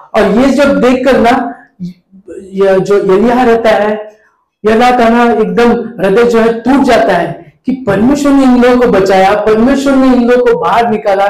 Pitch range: 190-230 Hz